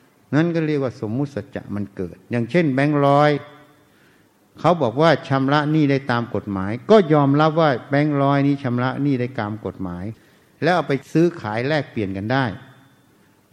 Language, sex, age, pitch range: Thai, male, 60-79, 120-160 Hz